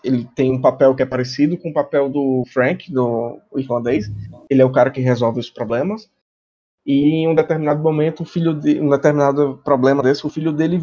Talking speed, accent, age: 210 wpm, Brazilian, 20-39